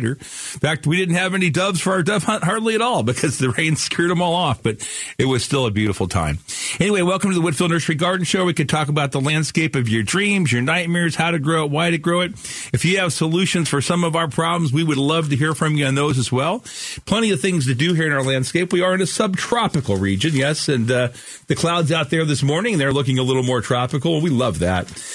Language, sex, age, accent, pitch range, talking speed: English, male, 50-69, American, 130-175 Hz, 260 wpm